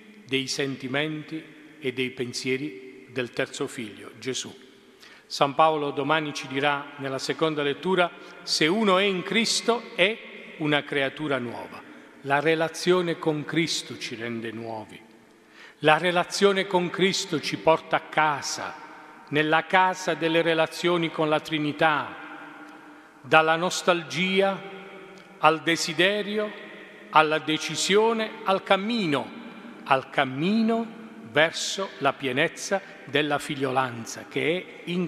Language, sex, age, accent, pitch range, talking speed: Italian, male, 40-59, native, 135-175 Hz, 115 wpm